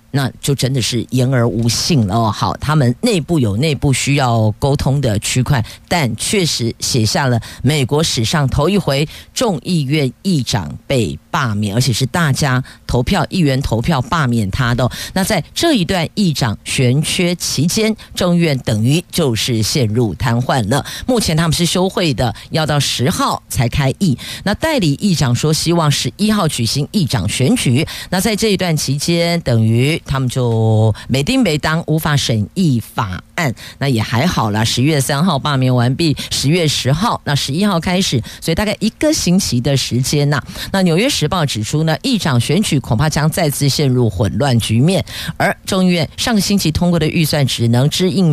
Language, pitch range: Chinese, 120-170 Hz